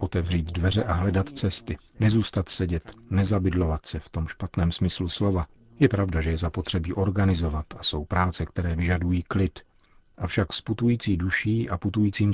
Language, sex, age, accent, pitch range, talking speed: Czech, male, 40-59, native, 85-105 Hz, 150 wpm